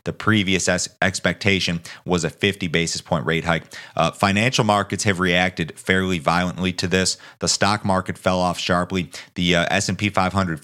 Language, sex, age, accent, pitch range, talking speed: English, male, 30-49, American, 85-95 Hz, 165 wpm